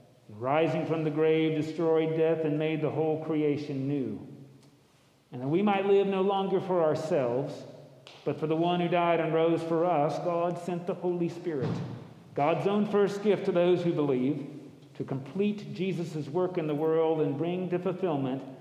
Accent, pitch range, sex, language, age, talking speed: American, 145-180 Hz, male, English, 50-69, 175 wpm